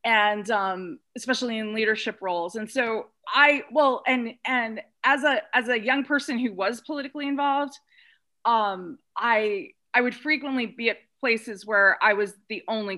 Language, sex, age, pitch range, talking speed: English, female, 30-49, 215-275 Hz, 160 wpm